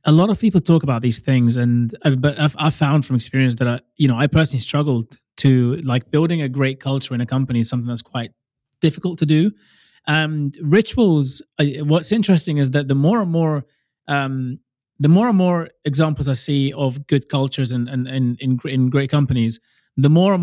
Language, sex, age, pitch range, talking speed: English, male, 20-39, 130-160 Hz, 210 wpm